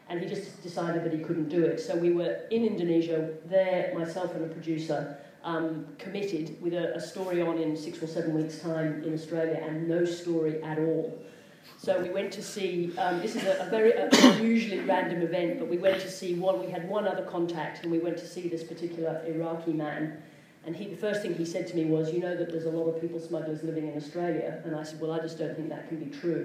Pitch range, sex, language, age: 160-175 Hz, female, English, 40-59